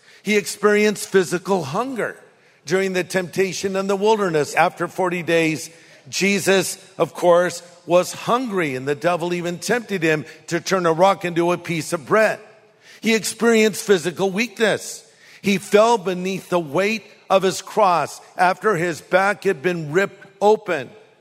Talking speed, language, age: 145 wpm, English, 50-69